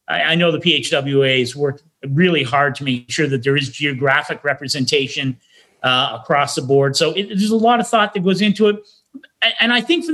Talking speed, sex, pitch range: 205 wpm, male, 140-195 Hz